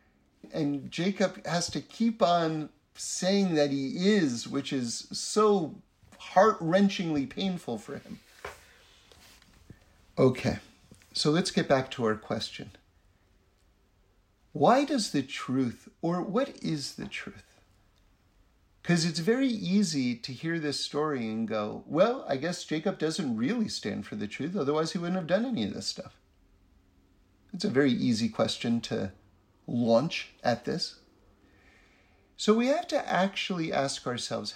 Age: 50-69